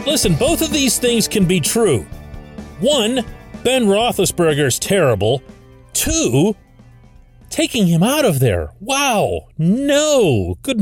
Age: 40-59